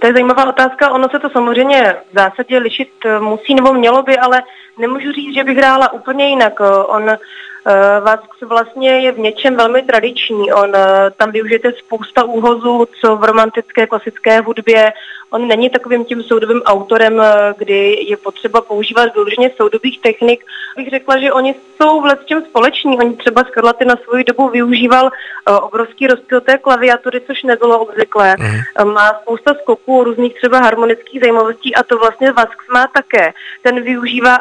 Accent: native